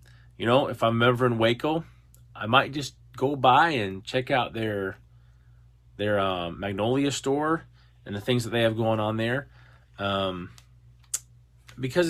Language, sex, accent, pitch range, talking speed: English, male, American, 95-125 Hz, 155 wpm